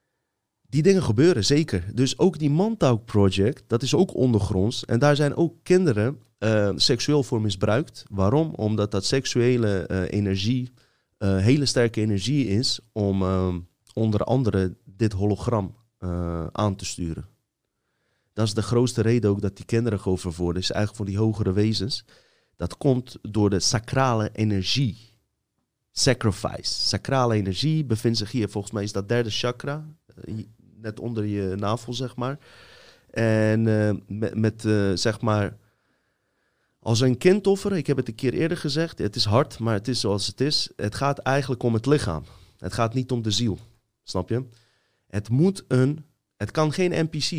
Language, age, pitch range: Dutch, 30-49, 100-130 Hz